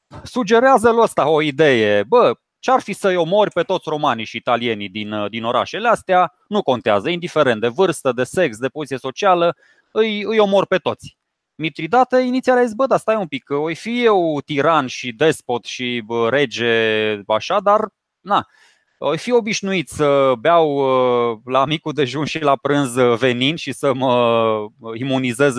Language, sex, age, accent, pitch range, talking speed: Romanian, male, 20-39, native, 130-195 Hz, 160 wpm